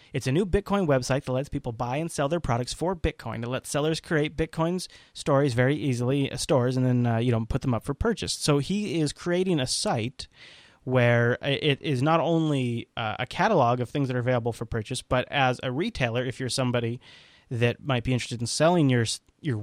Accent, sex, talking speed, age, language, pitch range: American, male, 215 wpm, 30-49, English, 120-150 Hz